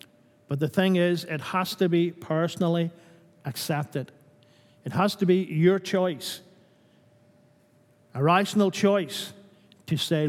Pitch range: 145-185 Hz